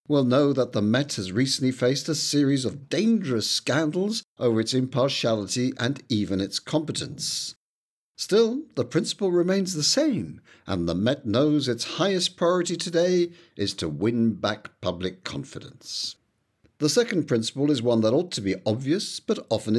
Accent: British